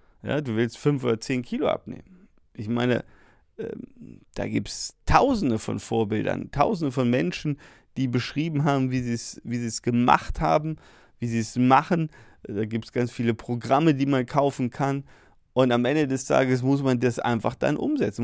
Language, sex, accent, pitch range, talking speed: German, male, German, 120-140 Hz, 180 wpm